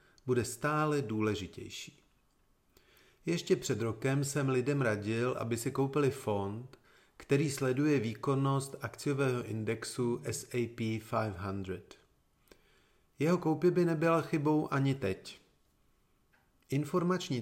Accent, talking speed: native, 95 wpm